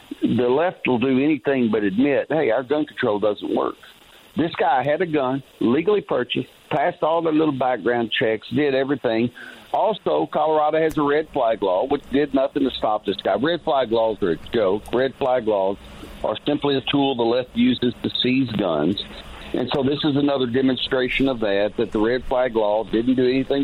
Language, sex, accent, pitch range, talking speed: English, male, American, 110-140 Hz, 195 wpm